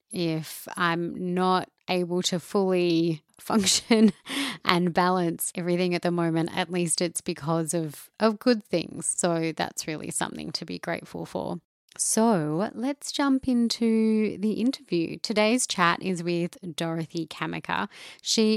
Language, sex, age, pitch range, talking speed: English, female, 20-39, 170-220 Hz, 135 wpm